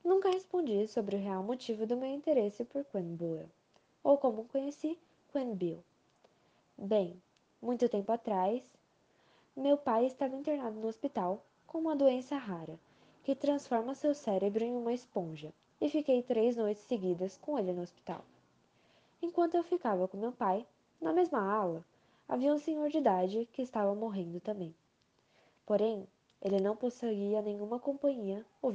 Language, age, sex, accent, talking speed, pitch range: Portuguese, 10-29, female, Brazilian, 150 wpm, 200-285 Hz